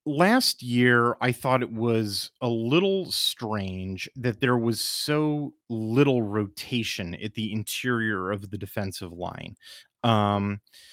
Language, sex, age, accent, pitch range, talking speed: English, male, 30-49, American, 105-130 Hz, 125 wpm